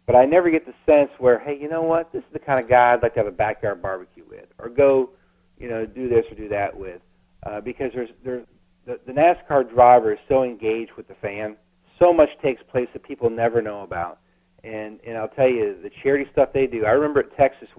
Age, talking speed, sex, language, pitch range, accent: 50-69, 235 wpm, male, English, 110-130 Hz, American